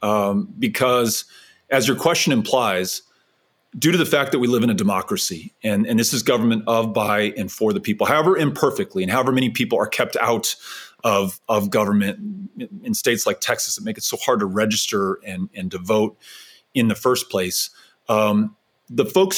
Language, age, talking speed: English, 30-49, 190 wpm